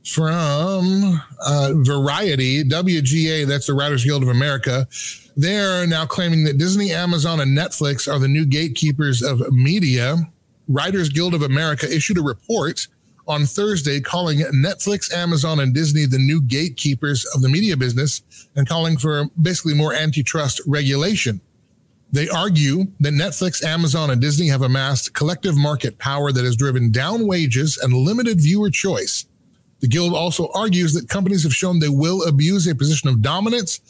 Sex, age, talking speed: male, 30-49, 155 wpm